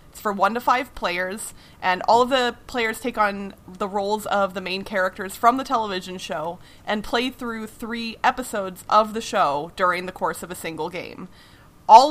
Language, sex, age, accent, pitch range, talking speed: English, female, 30-49, American, 185-240 Hz, 195 wpm